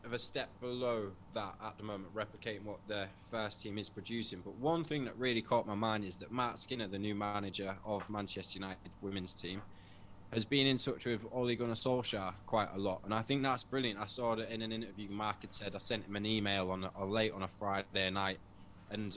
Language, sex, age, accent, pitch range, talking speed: English, male, 20-39, British, 100-120 Hz, 230 wpm